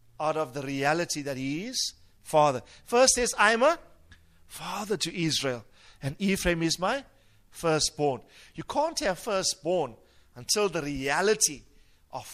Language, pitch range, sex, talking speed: English, 120-190 Hz, male, 140 wpm